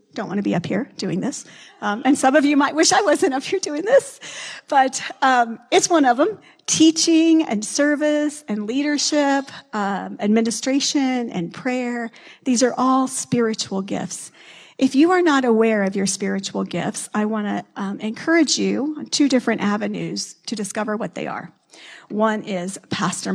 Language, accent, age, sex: English, American, 40-59, female